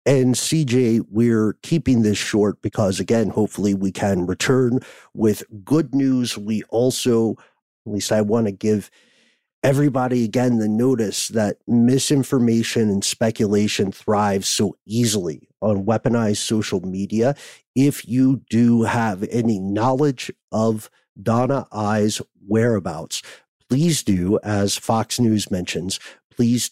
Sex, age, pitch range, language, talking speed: male, 50-69, 105-130 Hz, English, 125 wpm